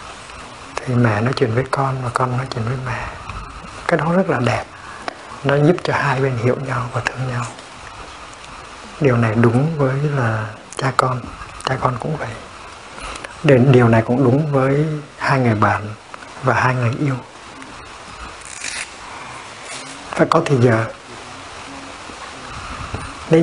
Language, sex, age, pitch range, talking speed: Vietnamese, male, 60-79, 110-135 Hz, 145 wpm